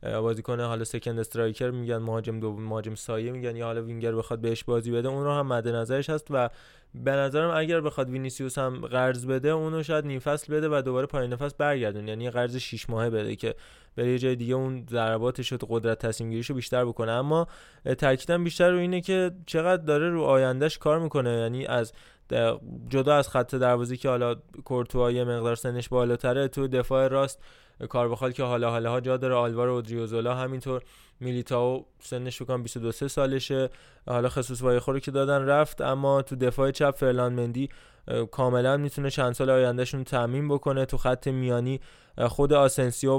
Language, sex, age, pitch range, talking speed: Persian, male, 20-39, 120-135 Hz, 175 wpm